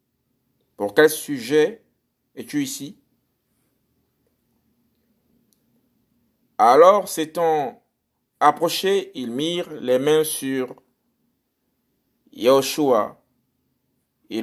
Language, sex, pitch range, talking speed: French, male, 130-165 Hz, 60 wpm